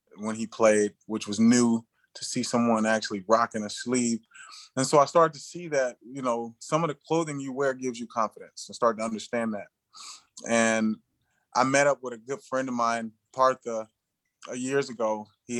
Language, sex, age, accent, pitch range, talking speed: English, male, 20-39, American, 115-130 Hz, 190 wpm